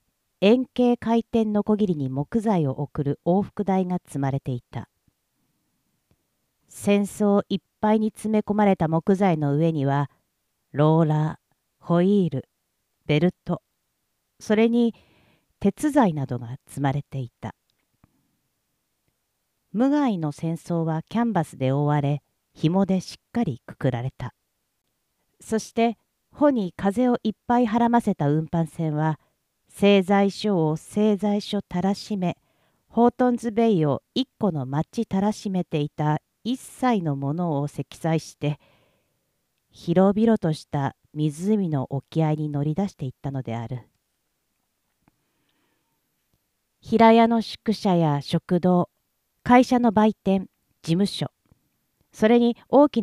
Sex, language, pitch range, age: female, Japanese, 145-215 Hz, 50-69